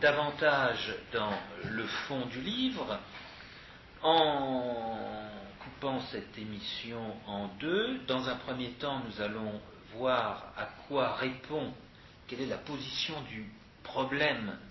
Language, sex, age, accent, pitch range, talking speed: French, male, 50-69, French, 110-135 Hz, 115 wpm